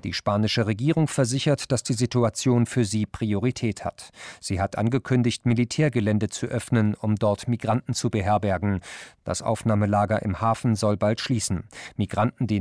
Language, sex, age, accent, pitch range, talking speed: German, male, 40-59, German, 105-120 Hz, 150 wpm